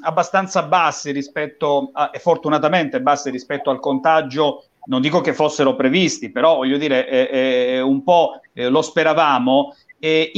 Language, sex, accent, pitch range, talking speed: Italian, male, native, 155-205 Hz, 145 wpm